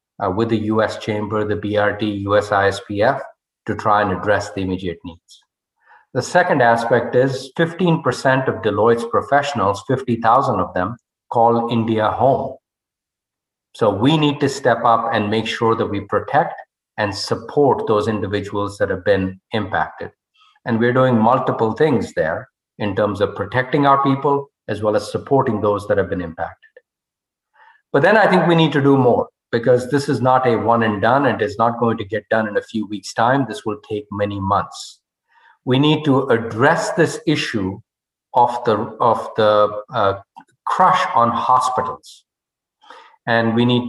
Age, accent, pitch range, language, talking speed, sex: 50-69, Indian, 105-135 Hz, English, 165 wpm, male